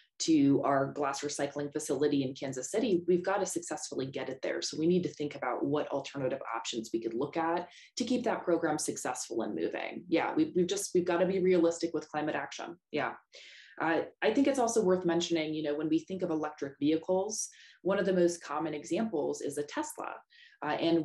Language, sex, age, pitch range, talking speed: English, female, 20-39, 150-195 Hz, 210 wpm